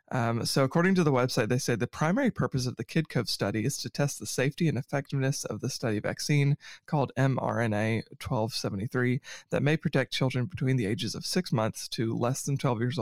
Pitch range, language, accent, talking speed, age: 125-145 Hz, English, American, 200 wpm, 30-49